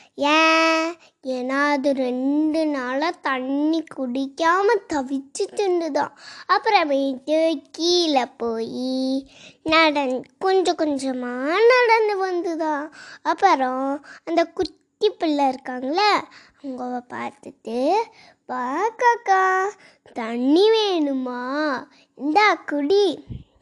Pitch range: 270-355 Hz